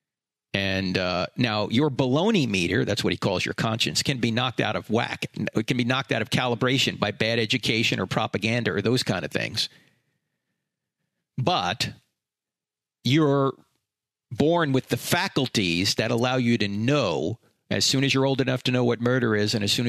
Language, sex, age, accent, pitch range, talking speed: English, male, 40-59, American, 110-140 Hz, 180 wpm